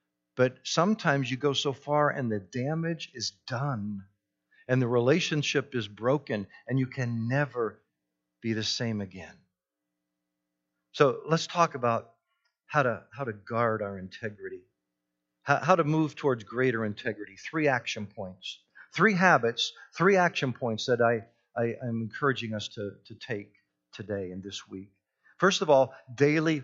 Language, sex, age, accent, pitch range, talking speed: English, male, 50-69, American, 115-185 Hz, 140 wpm